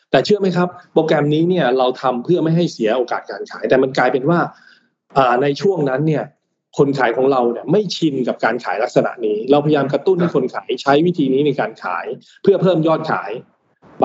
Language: Thai